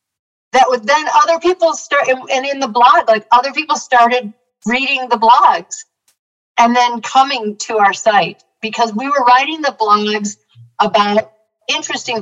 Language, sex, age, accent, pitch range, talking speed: English, female, 50-69, American, 195-245 Hz, 150 wpm